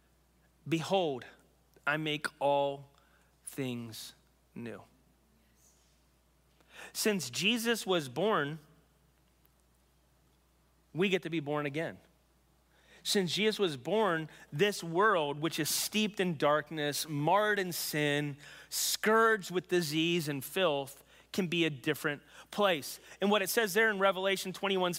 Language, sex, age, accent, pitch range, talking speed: English, male, 30-49, American, 155-205 Hz, 115 wpm